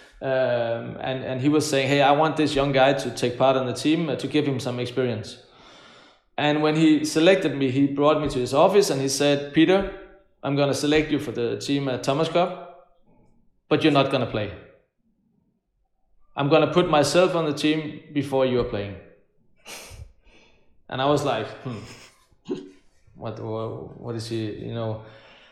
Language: German